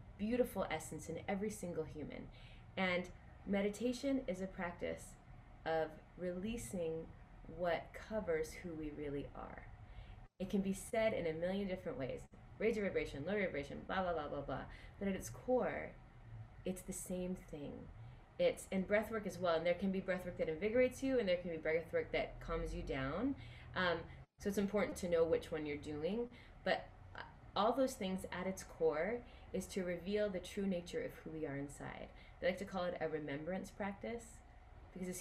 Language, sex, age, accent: English, female, 20-39, American